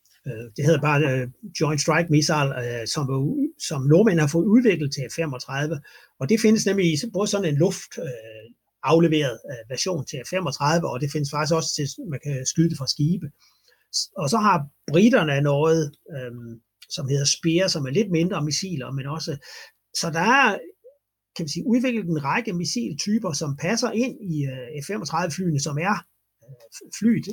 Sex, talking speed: male, 160 wpm